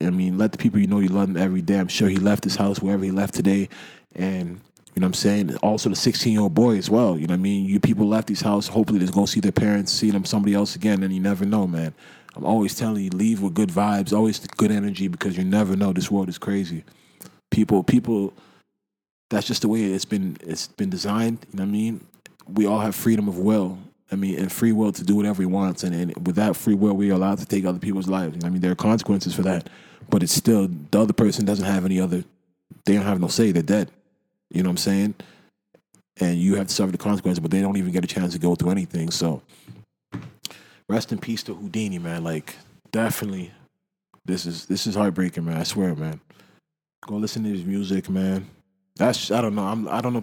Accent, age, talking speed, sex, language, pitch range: American, 20-39, 245 wpm, male, English, 95-105 Hz